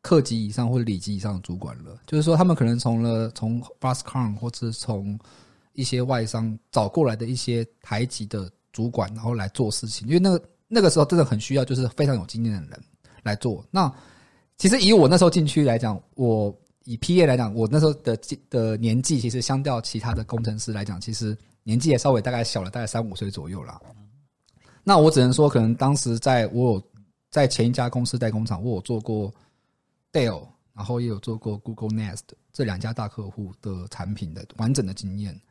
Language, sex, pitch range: Chinese, male, 110-135 Hz